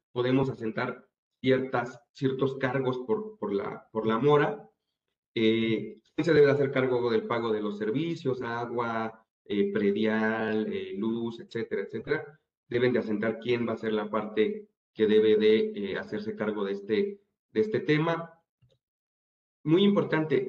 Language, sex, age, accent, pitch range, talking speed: Spanish, male, 40-59, Mexican, 110-145 Hz, 150 wpm